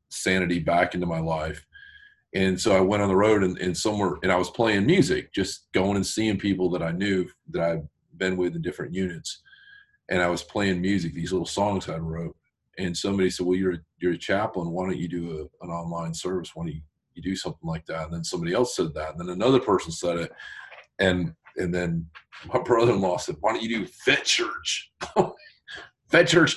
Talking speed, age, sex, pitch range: 210 wpm, 40-59, male, 85-110 Hz